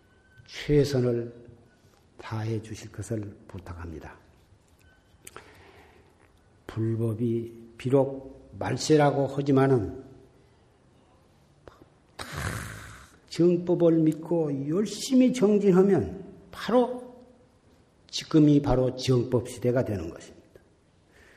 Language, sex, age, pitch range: Korean, male, 50-69, 115-165 Hz